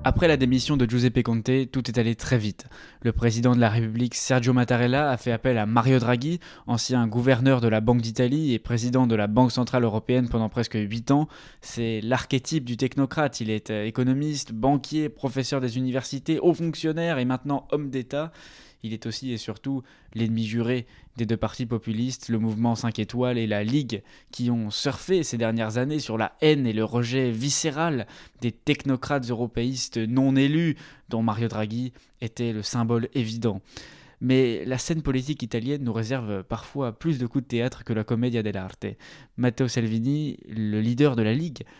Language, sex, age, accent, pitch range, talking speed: French, male, 20-39, French, 115-140 Hz, 180 wpm